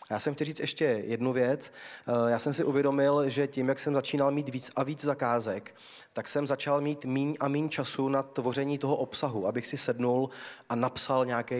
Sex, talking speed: male, 200 wpm